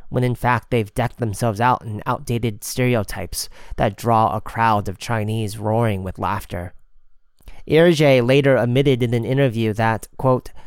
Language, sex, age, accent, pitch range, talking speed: English, male, 30-49, American, 100-125 Hz, 150 wpm